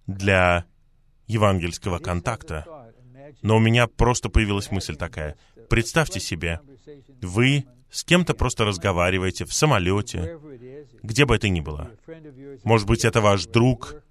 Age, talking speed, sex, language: 30-49, 125 wpm, male, Russian